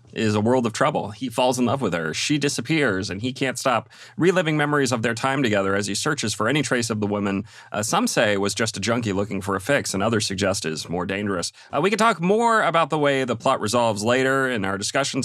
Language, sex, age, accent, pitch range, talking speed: English, male, 30-49, American, 105-135 Hz, 250 wpm